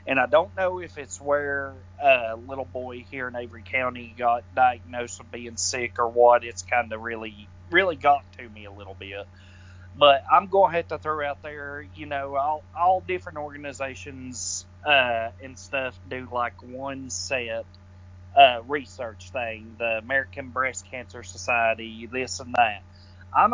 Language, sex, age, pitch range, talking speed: English, male, 30-49, 95-140 Hz, 170 wpm